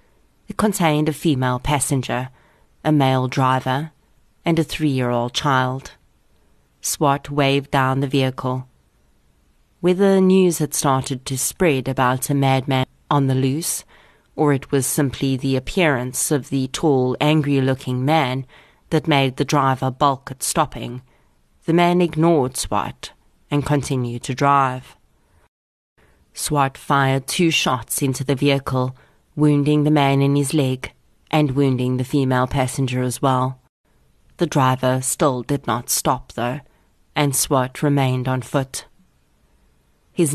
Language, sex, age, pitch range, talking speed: English, female, 30-49, 130-150 Hz, 135 wpm